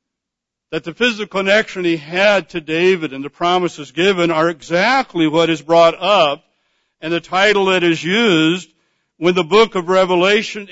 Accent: American